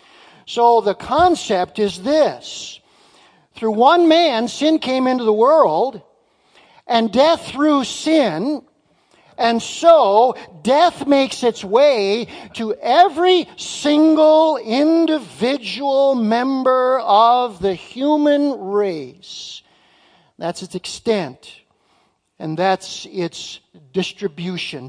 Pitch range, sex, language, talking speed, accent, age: 190-280 Hz, male, English, 95 wpm, American, 50-69